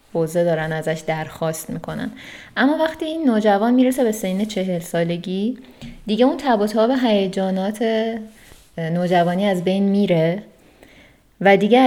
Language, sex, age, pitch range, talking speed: Persian, female, 20-39, 170-210 Hz, 115 wpm